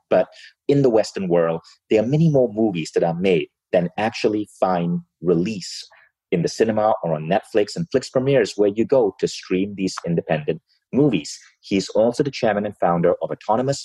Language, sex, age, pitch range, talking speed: English, male, 30-49, 95-140 Hz, 180 wpm